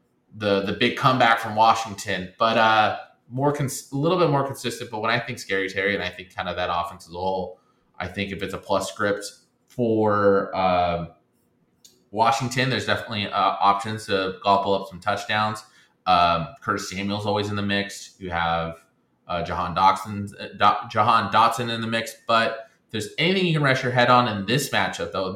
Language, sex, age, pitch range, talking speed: English, male, 20-39, 95-115 Hz, 195 wpm